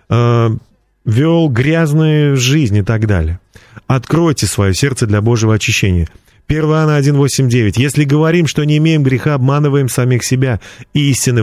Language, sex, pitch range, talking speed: Russian, male, 115-170 Hz, 120 wpm